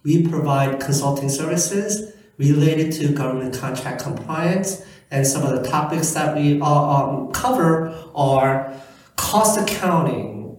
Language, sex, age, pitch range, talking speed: English, male, 50-69, 140-175 Hz, 125 wpm